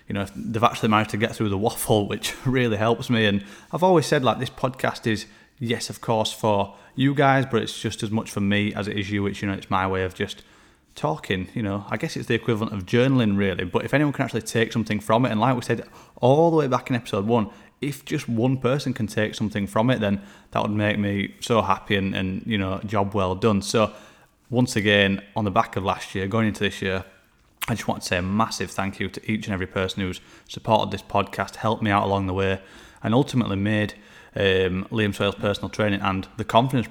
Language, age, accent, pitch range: English, 20-39, British, 100-125 Hz